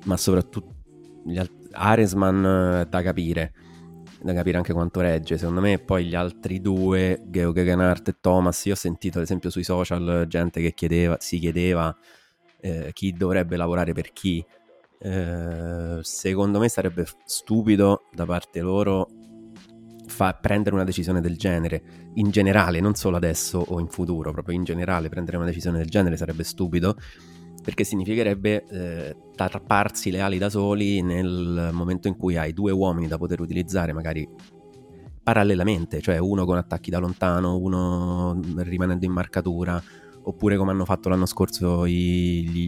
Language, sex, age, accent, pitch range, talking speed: Italian, male, 20-39, native, 85-95 Hz, 155 wpm